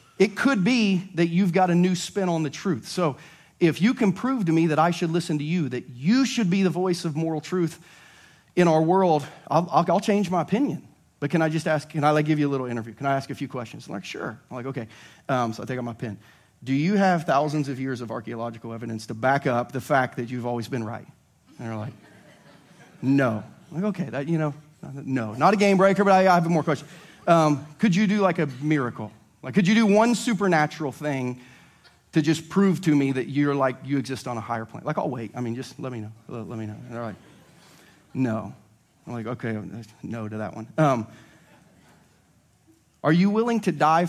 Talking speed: 230 wpm